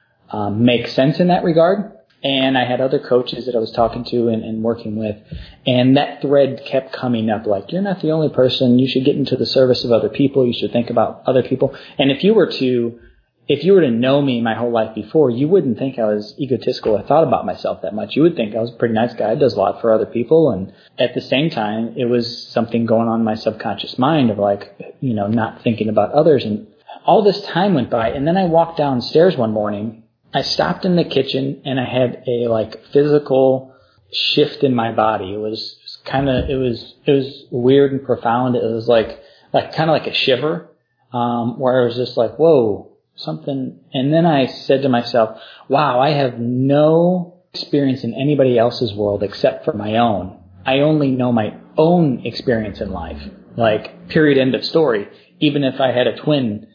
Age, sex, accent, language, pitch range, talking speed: 20-39, male, American, English, 115-140 Hz, 215 wpm